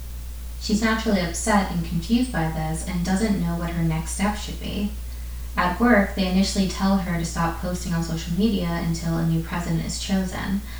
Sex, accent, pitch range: female, American, 165-195 Hz